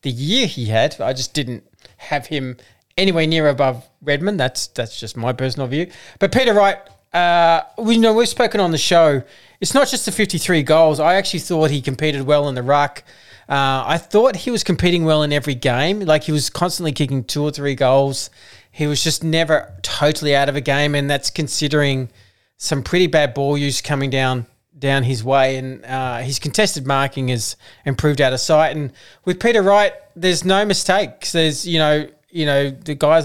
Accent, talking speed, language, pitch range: Australian, 200 wpm, English, 130-160 Hz